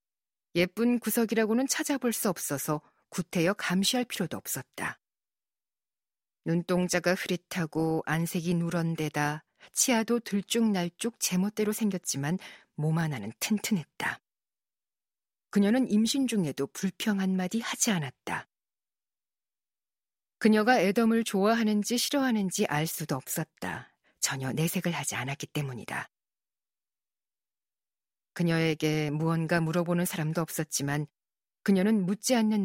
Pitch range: 160-215 Hz